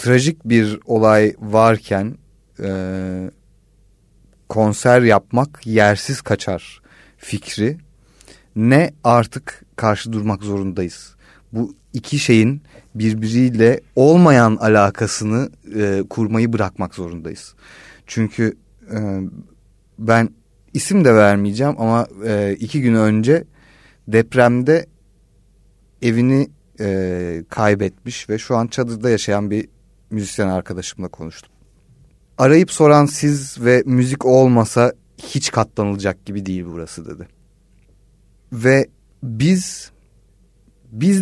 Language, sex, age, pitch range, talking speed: Turkish, male, 40-59, 100-125 Hz, 95 wpm